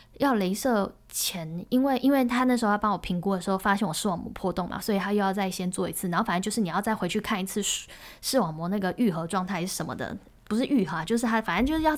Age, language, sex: 10-29, Chinese, female